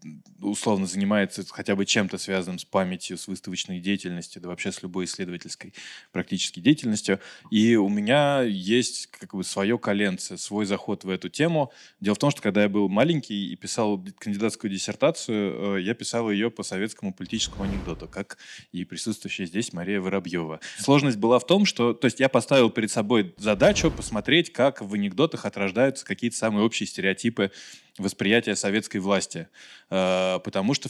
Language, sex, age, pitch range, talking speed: Russian, male, 20-39, 100-125 Hz, 155 wpm